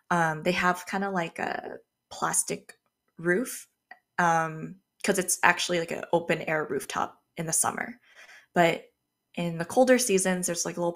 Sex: female